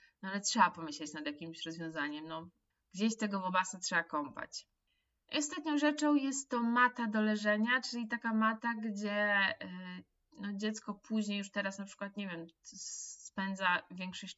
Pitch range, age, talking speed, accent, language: 185-225 Hz, 20-39, 150 wpm, native, Polish